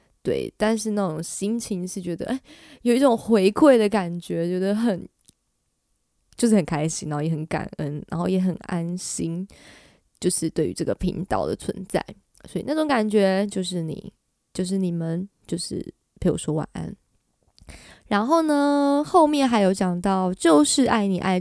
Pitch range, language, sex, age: 185-255 Hz, Chinese, female, 20-39